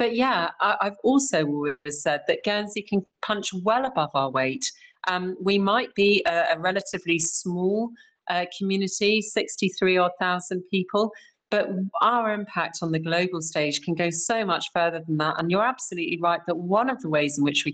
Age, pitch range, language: 40-59, 155-195 Hz, English